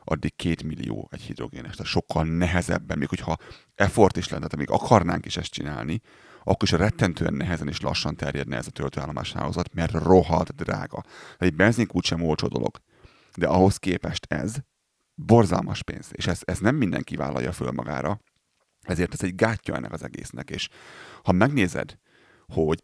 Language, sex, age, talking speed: Hungarian, male, 30-49, 170 wpm